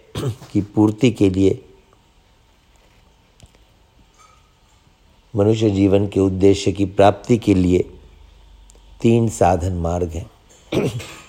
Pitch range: 95-115 Hz